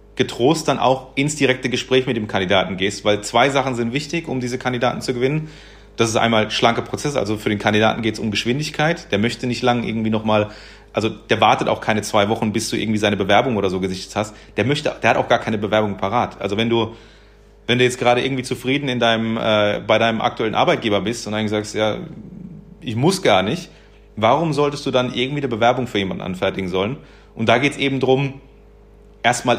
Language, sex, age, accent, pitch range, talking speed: German, male, 30-49, German, 110-135 Hz, 215 wpm